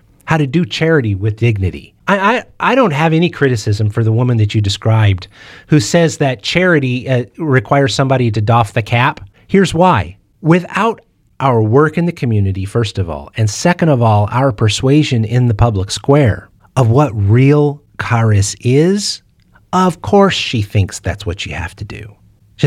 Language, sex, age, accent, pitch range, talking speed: English, male, 30-49, American, 105-140 Hz, 175 wpm